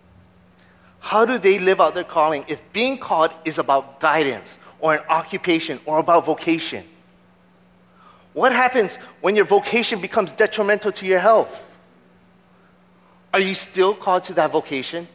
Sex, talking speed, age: male, 145 wpm, 30-49